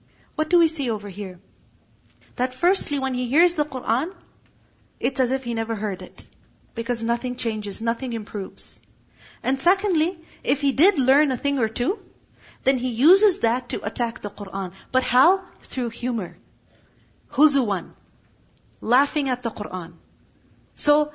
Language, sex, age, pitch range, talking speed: English, female, 40-59, 220-285 Hz, 150 wpm